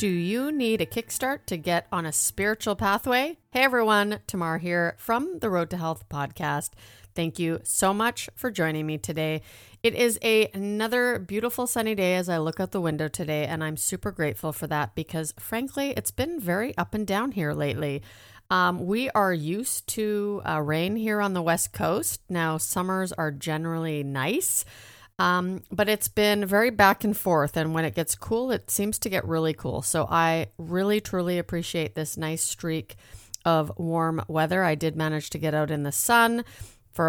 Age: 40-59